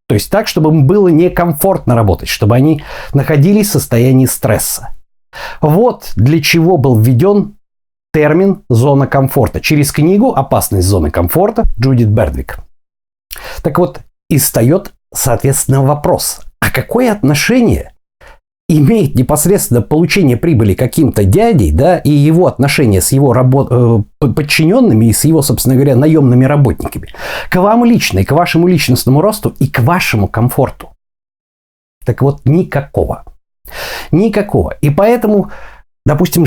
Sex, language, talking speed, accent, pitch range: male, Russian, 125 wpm, native, 125-175 Hz